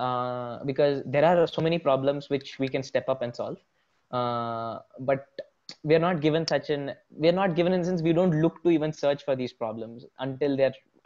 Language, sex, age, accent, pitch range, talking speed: English, male, 20-39, Indian, 130-165 Hz, 205 wpm